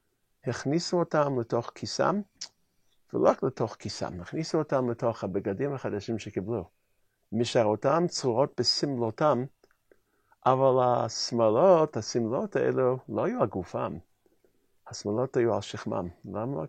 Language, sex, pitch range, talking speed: Hebrew, male, 120-150 Hz, 105 wpm